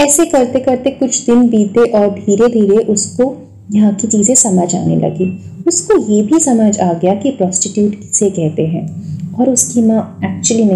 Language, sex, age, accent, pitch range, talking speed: Hindi, female, 20-39, native, 180-245 Hz, 165 wpm